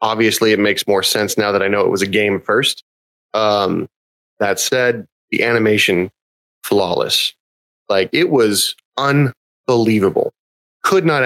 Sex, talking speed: male, 140 wpm